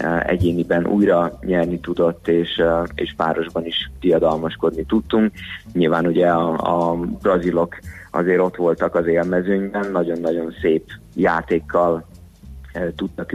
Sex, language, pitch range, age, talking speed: male, Hungarian, 85-90 Hz, 20-39, 110 wpm